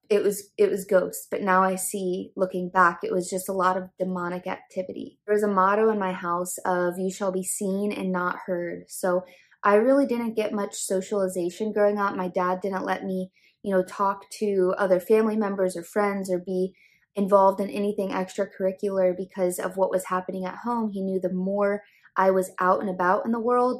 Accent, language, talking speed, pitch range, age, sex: American, English, 205 wpm, 185-205 Hz, 20-39, female